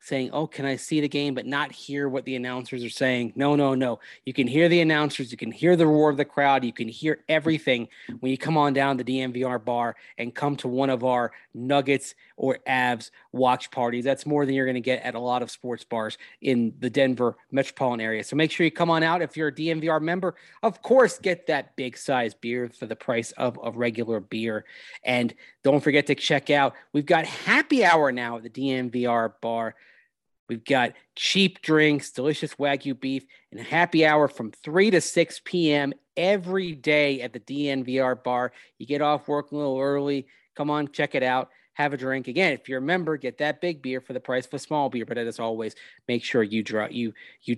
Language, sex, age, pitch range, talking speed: English, male, 30-49, 125-155 Hz, 220 wpm